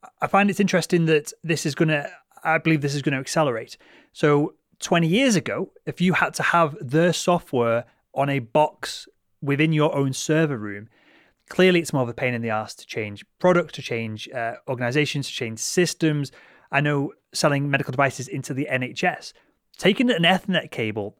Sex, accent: male, British